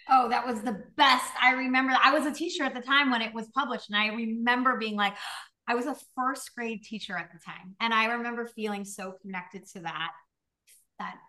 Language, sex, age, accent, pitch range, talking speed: English, female, 30-49, American, 195-260 Hz, 220 wpm